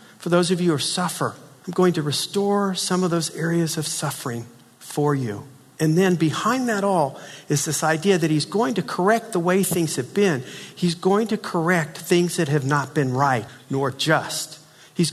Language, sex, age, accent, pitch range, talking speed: English, male, 50-69, American, 140-190 Hz, 195 wpm